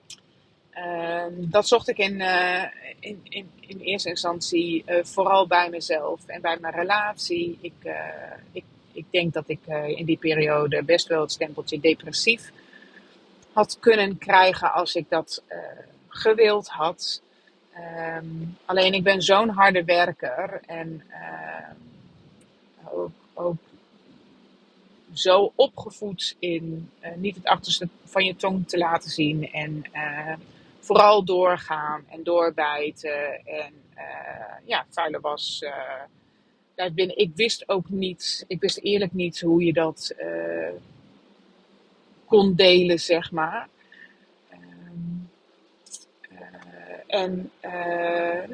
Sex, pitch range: female, 160-190 Hz